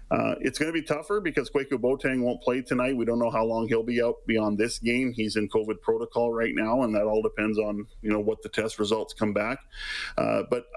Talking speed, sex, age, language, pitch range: 245 wpm, male, 40-59, English, 105-125 Hz